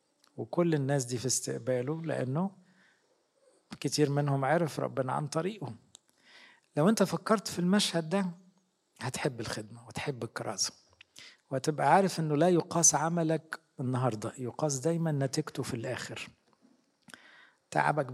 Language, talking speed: English, 115 wpm